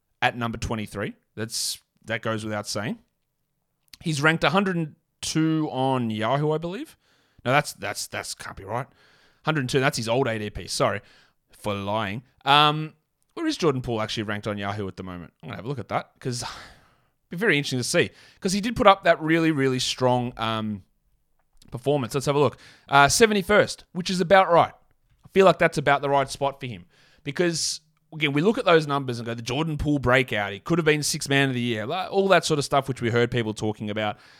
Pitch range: 120-155 Hz